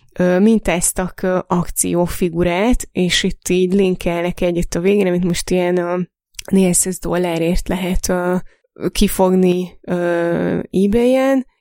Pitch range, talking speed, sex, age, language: 175-200 Hz, 100 wpm, female, 20-39, Hungarian